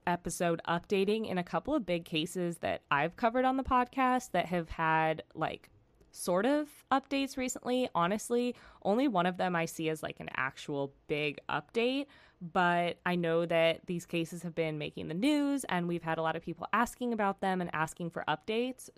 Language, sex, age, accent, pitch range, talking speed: English, female, 20-39, American, 160-215 Hz, 190 wpm